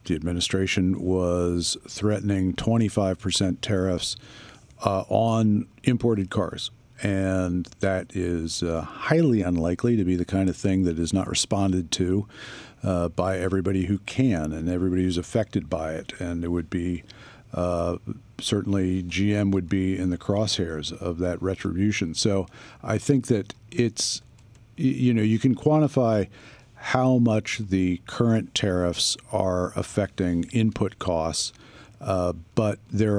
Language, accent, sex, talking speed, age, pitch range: English, American, male, 135 wpm, 50-69, 90-110 Hz